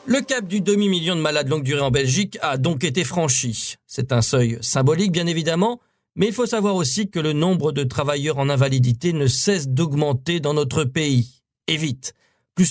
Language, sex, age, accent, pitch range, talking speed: French, male, 50-69, French, 140-190 Hz, 195 wpm